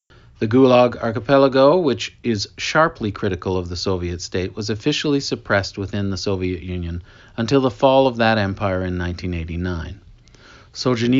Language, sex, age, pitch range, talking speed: English, male, 40-59, 95-120 Hz, 140 wpm